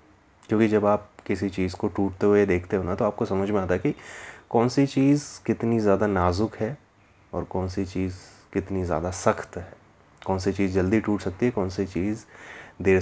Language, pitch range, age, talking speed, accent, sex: Hindi, 90-110 Hz, 30-49, 205 wpm, native, male